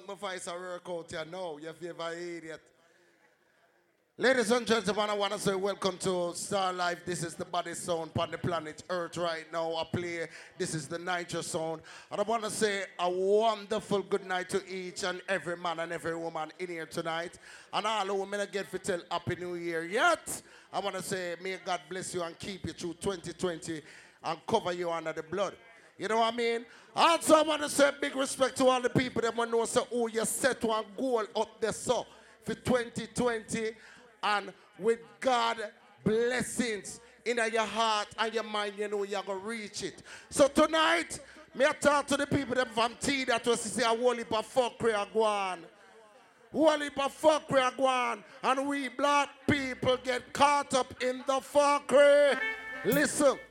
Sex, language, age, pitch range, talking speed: male, English, 30-49, 180-245 Hz, 190 wpm